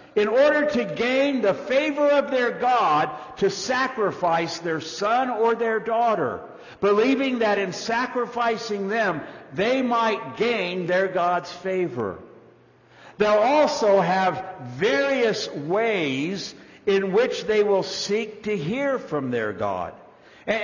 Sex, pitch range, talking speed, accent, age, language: male, 160-240 Hz, 125 wpm, American, 60-79, English